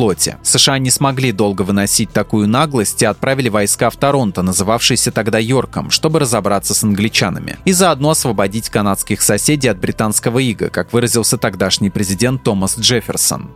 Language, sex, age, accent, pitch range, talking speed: Russian, male, 20-39, native, 105-140 Hz, 145 wpm